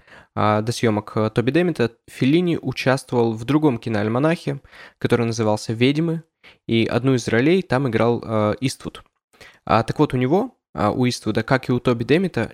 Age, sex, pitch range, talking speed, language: 20-39, male, 110-135 Hz, 160 wpm, Russian